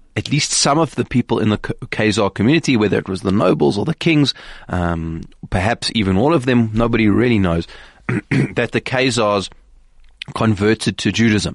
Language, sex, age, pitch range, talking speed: English, male, 20-39, 95-115 Hz, 170 wpm